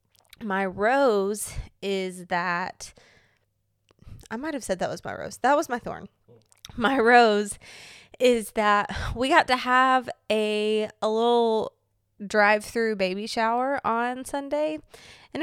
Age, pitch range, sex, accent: 20-39, 180-230 Hz, female, American